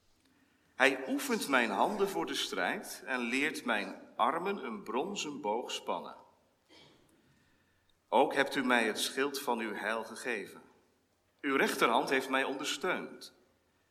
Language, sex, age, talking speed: Dutch, male, 40-59, 130 wpm